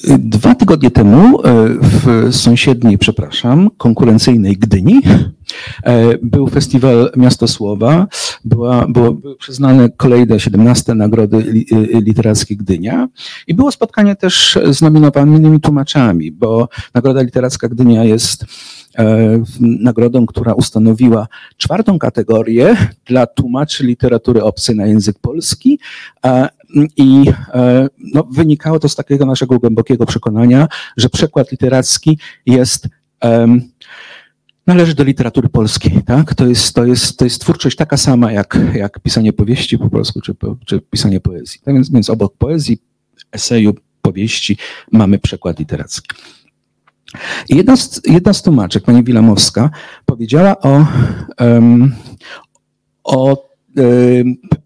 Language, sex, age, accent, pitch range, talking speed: Polish, male, 50-69, native, 115-140 Hz, 115 wpm